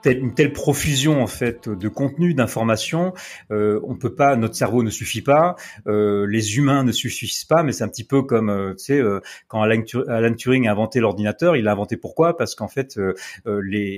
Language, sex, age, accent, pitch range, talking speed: French, male, 30-49, French, 110-140 Hz, 205 wpm